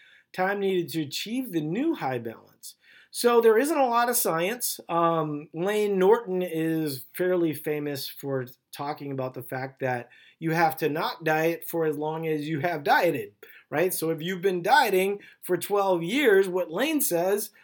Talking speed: 175 wpm